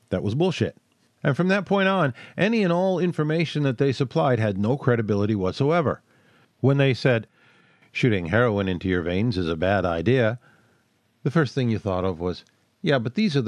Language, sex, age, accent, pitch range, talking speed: English, male, 50-69, American, 100-135 Hz, 185 wpm